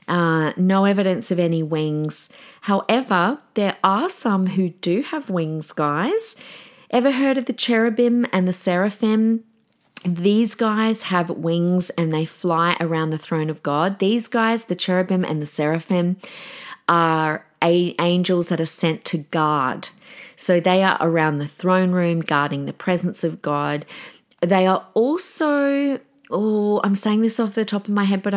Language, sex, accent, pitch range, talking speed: English, female, Australian, 165-210 Hz, 160 wpm